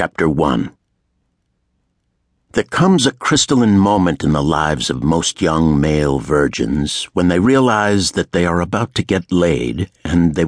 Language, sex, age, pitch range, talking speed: English, male, 60-79, 85-110 Hz, 155 wpm